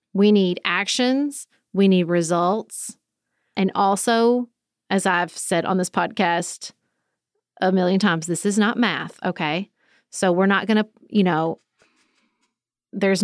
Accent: American